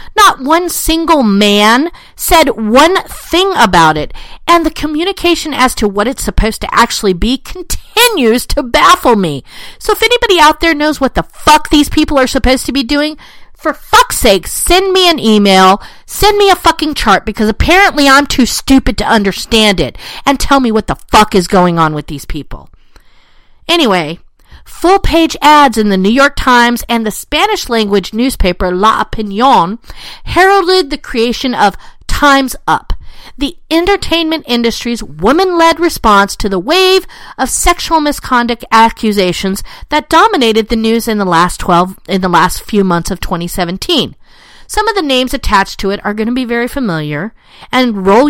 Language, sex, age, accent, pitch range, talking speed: English, female, 50-69, American, 205-315 Hz, 170 wpm